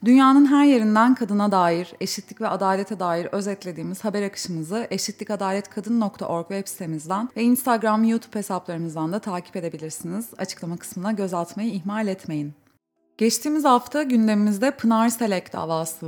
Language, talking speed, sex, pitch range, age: Turkish, 125 wpm, female, 180-225 Hz, 30-49